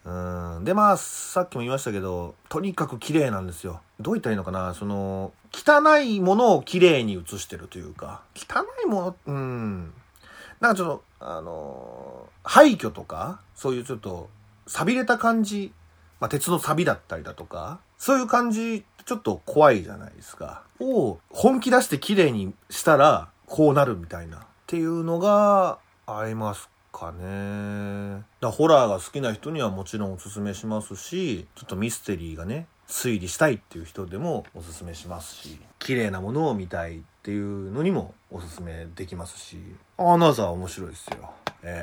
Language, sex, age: Japanese, male, 30-49